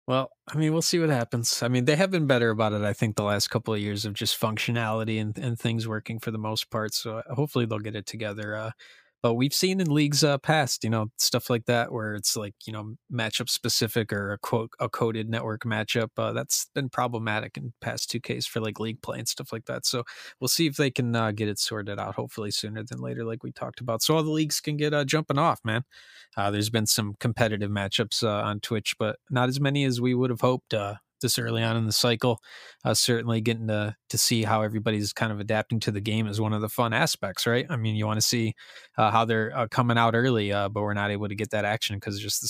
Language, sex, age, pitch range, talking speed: English, male, 20-39, 110-125 Hz, 255 wpm